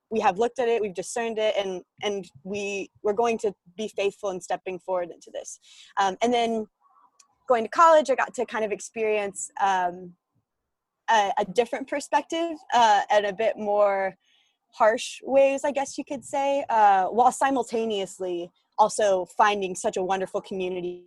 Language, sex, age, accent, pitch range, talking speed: English, female, 20-39, American, 185-235 Hz, 170 wpm